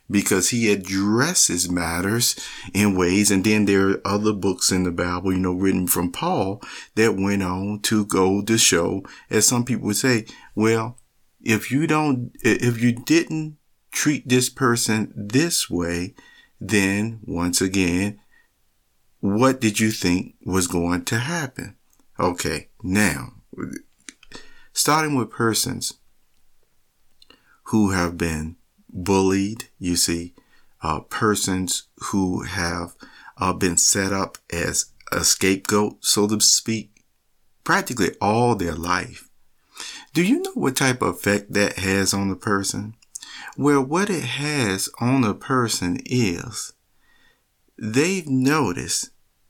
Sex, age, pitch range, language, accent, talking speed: male, 50-69, 95-125 Hz, English, American, 130 wpm